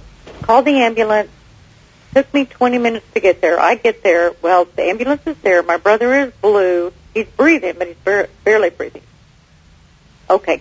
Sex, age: female, 50-69